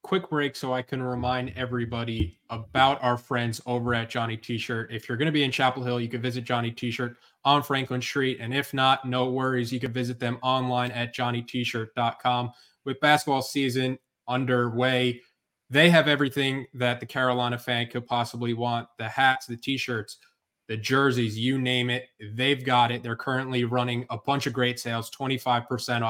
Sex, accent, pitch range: male, American, 120-135 Hz